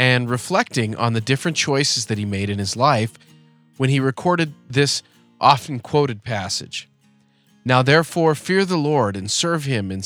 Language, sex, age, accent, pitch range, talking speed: English, male, 30-49, American, 110-150 Hz, 160 wpm